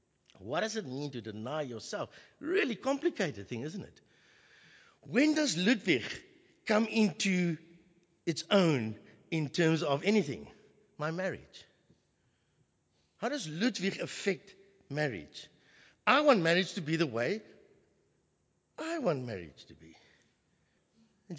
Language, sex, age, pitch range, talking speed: English, male, 60-79, 150-235 Hz, 120 wpm